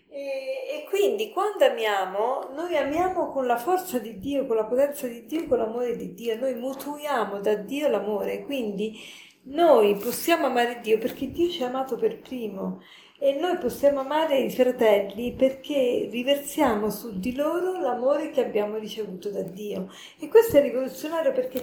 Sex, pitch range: female, 220-290 Hz